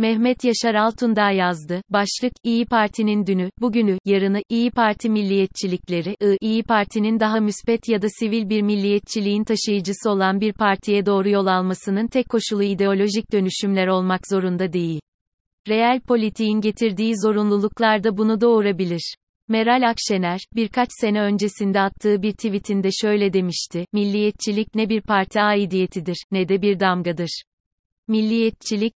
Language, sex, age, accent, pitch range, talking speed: Turkish, female, 30-49, native, 190-220 Hz, 130 wpm